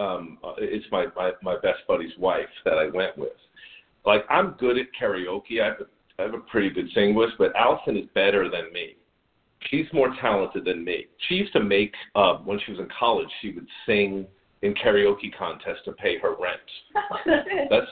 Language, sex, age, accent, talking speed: English, male, 40-59, American, 200 wpm